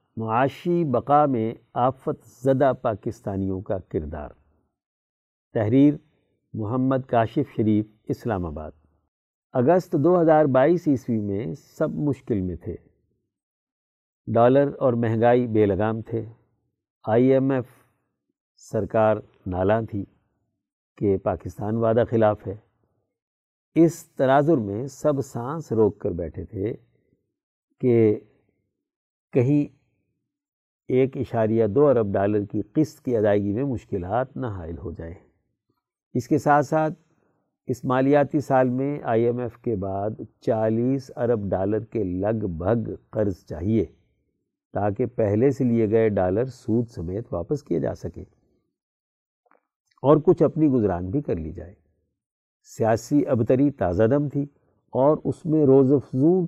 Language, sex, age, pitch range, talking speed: Urdu, male, 50-69, 105-140 Hz, 125 wpm